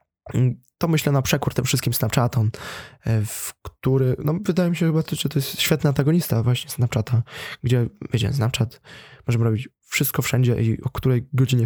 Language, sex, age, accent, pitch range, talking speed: Polish, male, 20-39, native, 115-140 Hz, 165 wpm